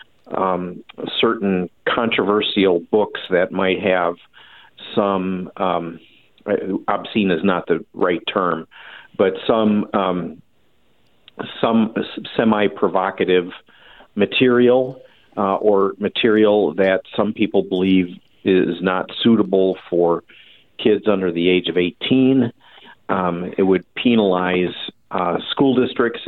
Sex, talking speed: male, 105 wpm